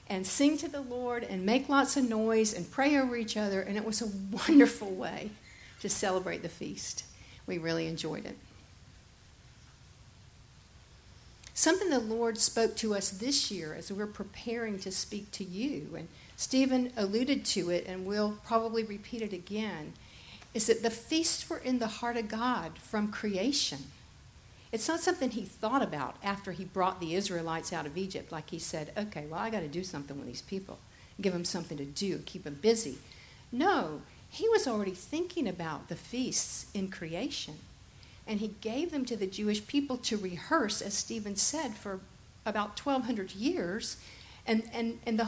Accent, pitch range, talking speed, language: American, 190-255 Hz, 175 wpm, English